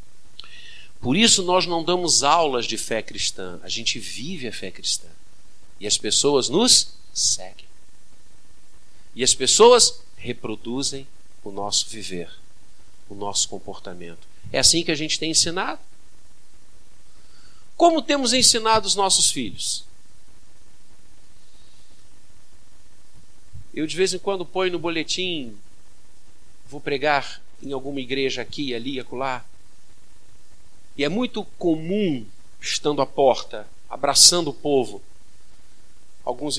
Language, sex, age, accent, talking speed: Portuguese, male, 50-69, Brazilian, 115 wpm